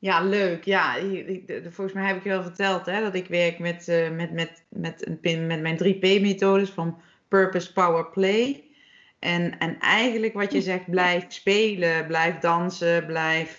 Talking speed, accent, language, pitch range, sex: 170 wpm, Dutch, Dutch, 155-175 Hz, female